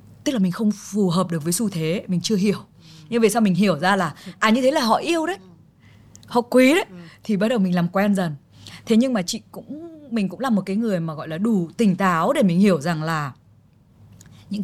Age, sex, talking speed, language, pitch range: 20-39, female, 245 wpm, Vietnamese, 170-235 Hz